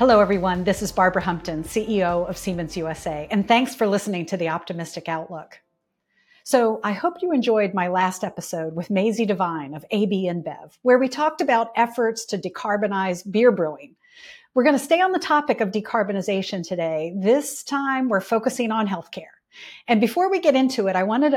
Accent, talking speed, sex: American, 185 wpm, female